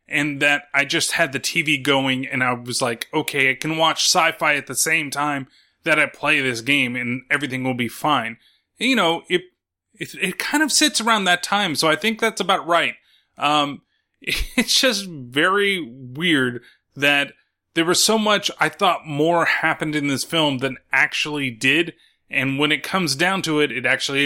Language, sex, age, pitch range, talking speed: English, male, 20-39, 140-190 Hz, 190 wpm